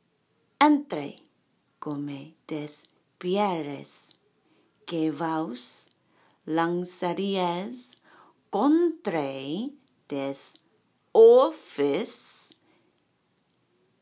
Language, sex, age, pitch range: Japanese, female, 30-49, 165-275 Hz